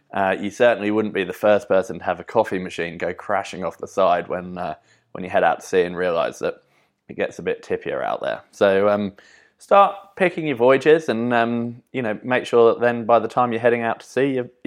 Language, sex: English, male